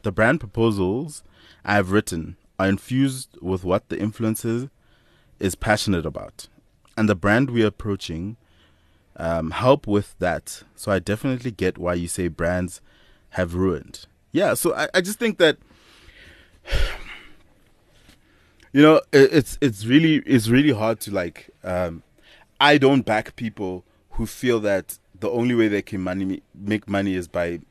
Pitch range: 95-115 Hz